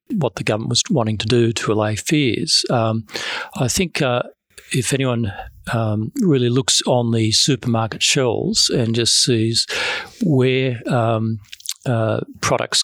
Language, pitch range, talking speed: English, 110-130 Hz, 140 wpm